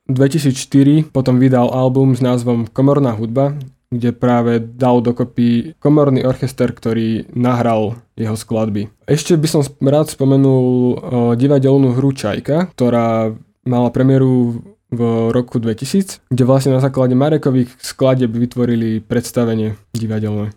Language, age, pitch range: Slovak, 20-39, 120-135 Hz